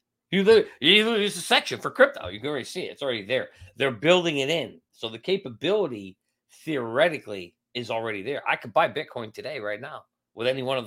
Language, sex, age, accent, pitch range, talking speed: English, male, 40-59, American, 110-150 Hz, 205 wpm